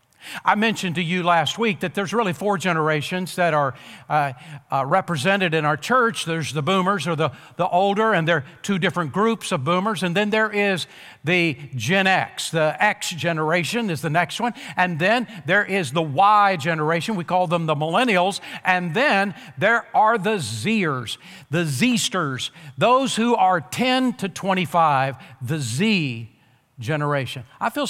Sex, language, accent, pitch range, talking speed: male, English, American, 155-205 Hz, 170 wpm